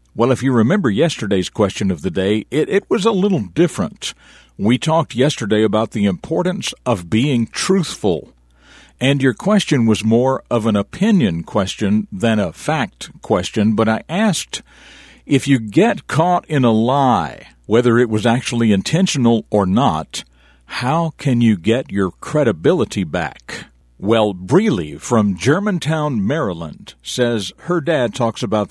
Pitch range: 110-150 Hz